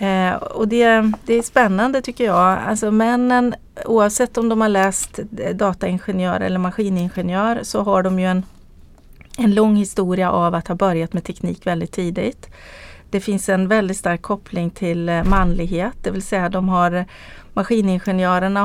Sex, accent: female, native